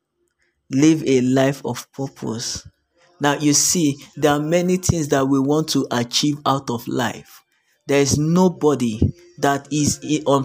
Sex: male